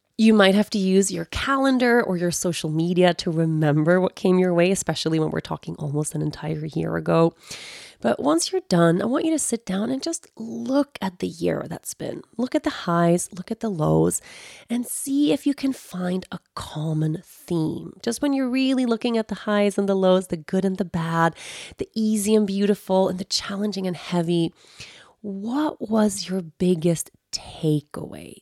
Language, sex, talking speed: English, female, 190 wpm